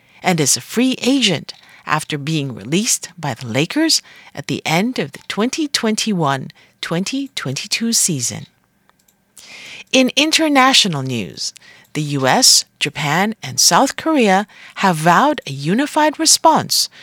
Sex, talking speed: female, 115 wpm